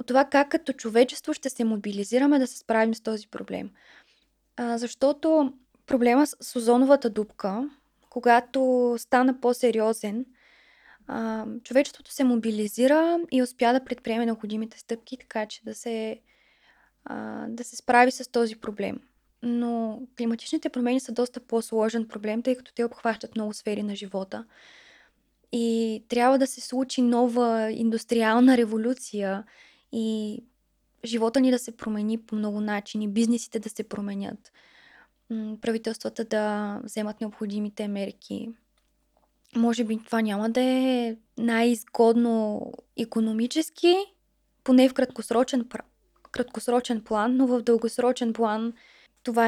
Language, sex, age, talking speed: Bulgarian, female, 20-39, 125 wpm